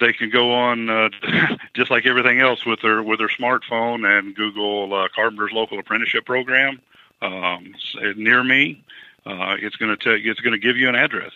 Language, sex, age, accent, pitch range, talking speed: English, male, 50-69, American, 100-115 Hz, 170 wpm